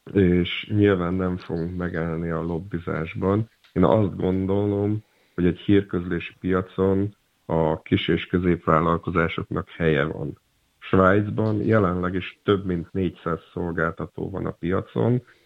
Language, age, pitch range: Hungarian, 50-69, 85-95 Hz